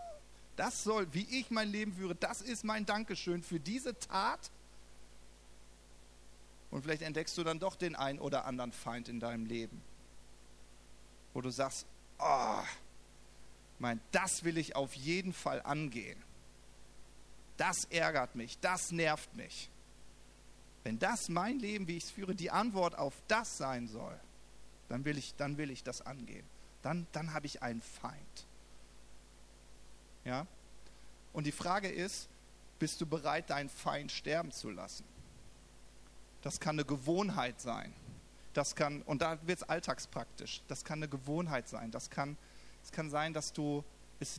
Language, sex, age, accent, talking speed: German, male, 40-59, German, 150 wpm